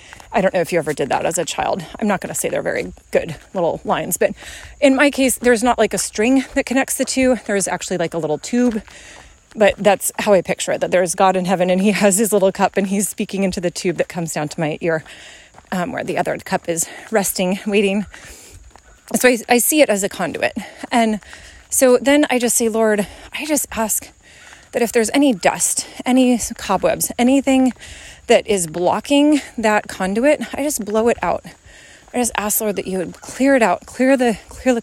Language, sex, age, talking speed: English, female, 30-49, 220 wpm